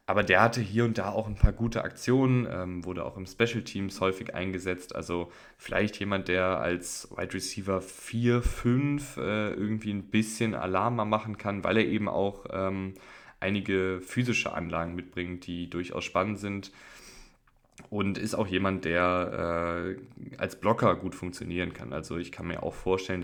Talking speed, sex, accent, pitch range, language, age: 170 wpm, male, German, 90-105 Hz, German, 20-39